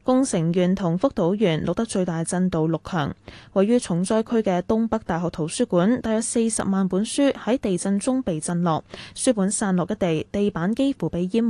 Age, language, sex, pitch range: 10-29, Chinese, female, 170-230 Hz